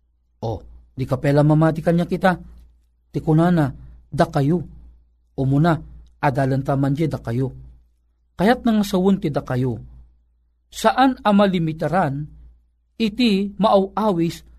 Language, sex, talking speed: Filipino, male, 110 wpm